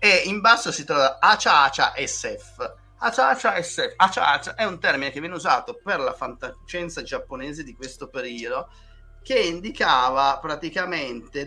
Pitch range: 130-175 Hz